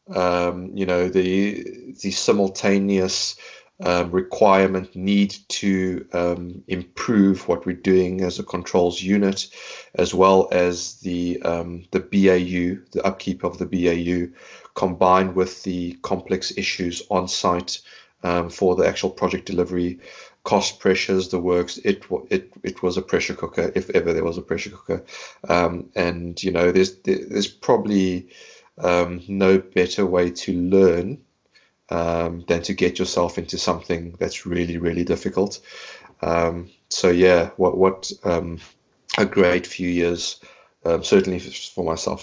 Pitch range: 85-95 Hz